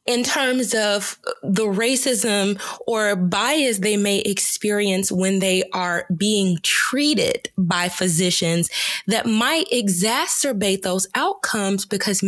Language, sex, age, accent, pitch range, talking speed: English, female, 20-39, American, 185-245 Hz, 110 wpm